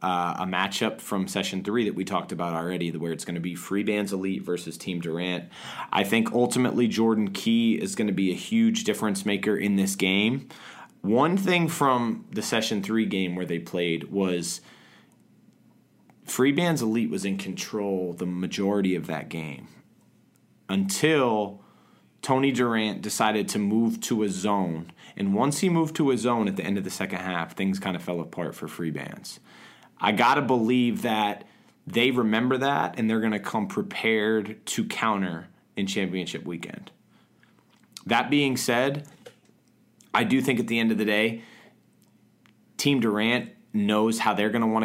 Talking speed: 175 wpm